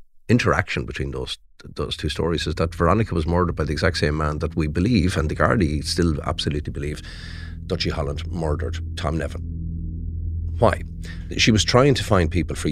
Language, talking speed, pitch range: English, 180 wpm, 80-85 Hz